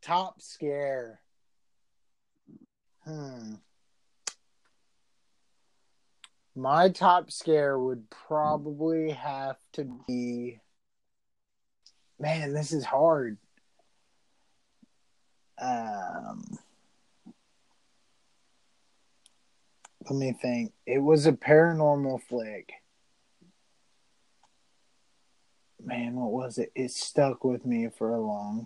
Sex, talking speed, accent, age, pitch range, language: male, 75 wpm, American, 30-49, 125-165 Hz, English